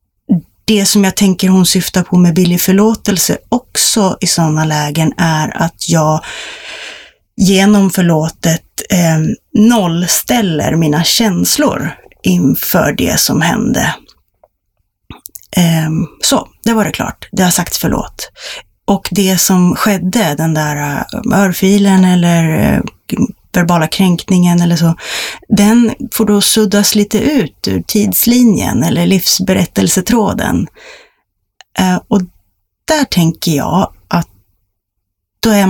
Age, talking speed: 30-49, 110 wpm